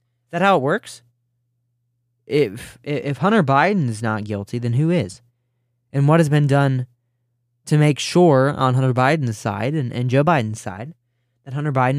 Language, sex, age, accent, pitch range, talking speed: English, male, 20-39, American, 120-155 Hz, 165 wpm